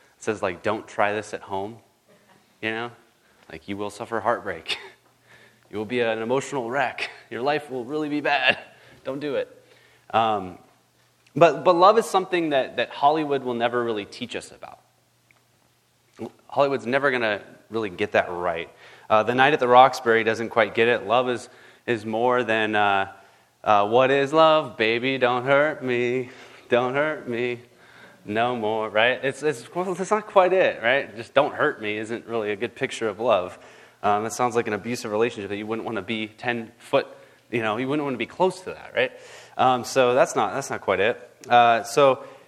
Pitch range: 110-140 Hz